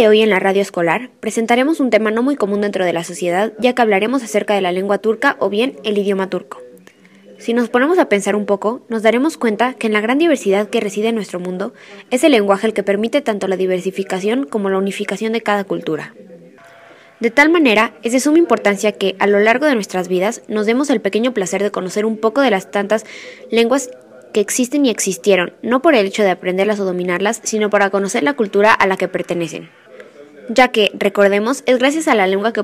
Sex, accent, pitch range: female, Mexican, 195-240 Hz